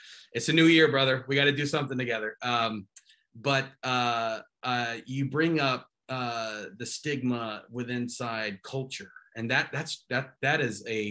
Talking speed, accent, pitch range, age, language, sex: 165 wpm, American, 110-125 Hz, 30-49, English, male